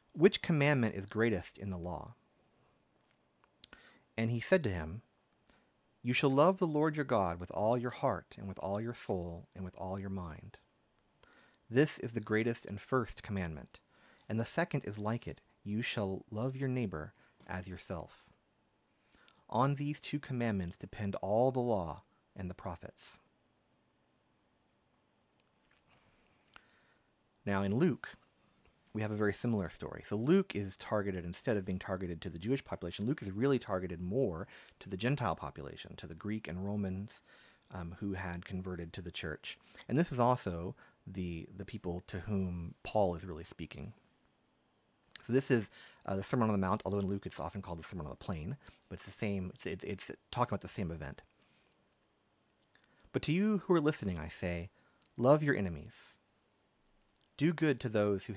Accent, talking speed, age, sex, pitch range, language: American, 170 wpm, 30-49, male, 90-120 Hz, English